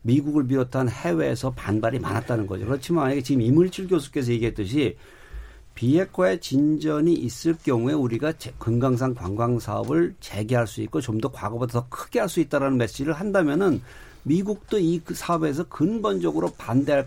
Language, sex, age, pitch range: Korean, male, 50-69, 115-160 Hz